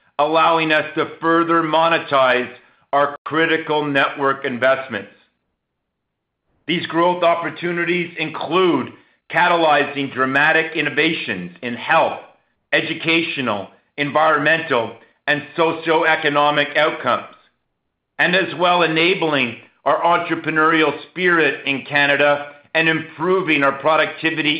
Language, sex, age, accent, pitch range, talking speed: English, male, 50-69, American, 140-160 Hz, 90 wpm